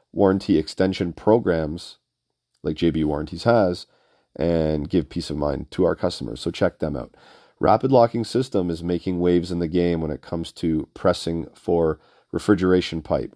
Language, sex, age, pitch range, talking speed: English, male, 40-59, 85-100 Hz, 160 wpm